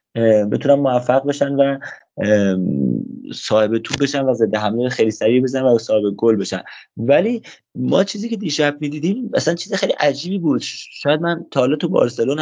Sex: male